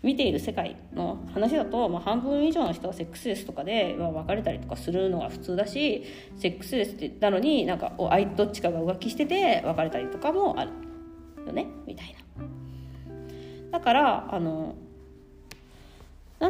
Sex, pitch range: female, 180-280 Hz